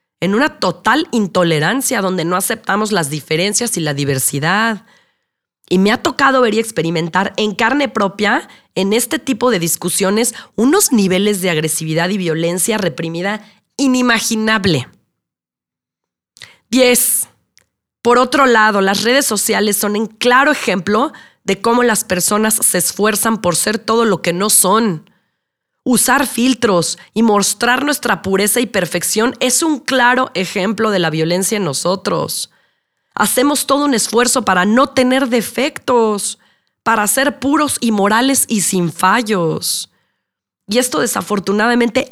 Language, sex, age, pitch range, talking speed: Spanish, female, 30-49, 185-245 Hz, 135 wpm